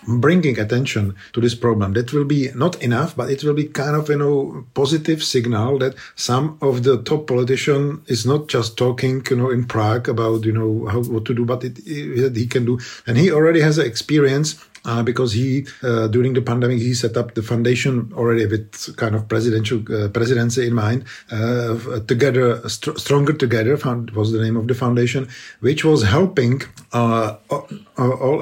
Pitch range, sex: 115-140 Hz, male